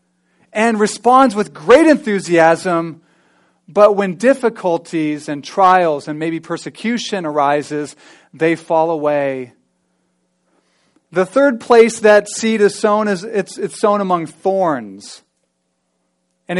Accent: American